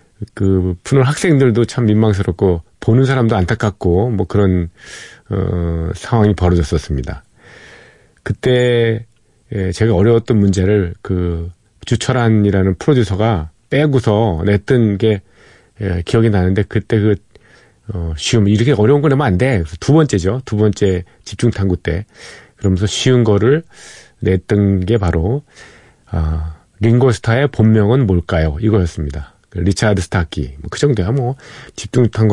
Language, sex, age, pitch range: Korean, male, 40-59, 90-115 Hz